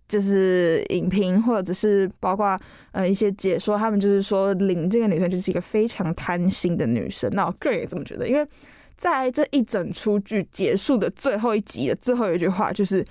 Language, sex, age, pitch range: Chinese, female, 10-29, 190-230 Hz